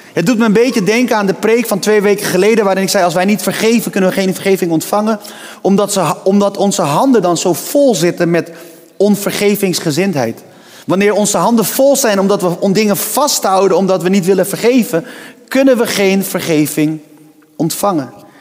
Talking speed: 180 wpm